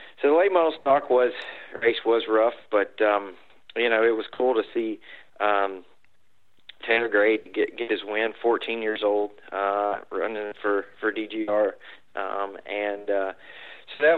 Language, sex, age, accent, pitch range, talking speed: English, male, 40-59, American, 105-115 Hz, 160 wpm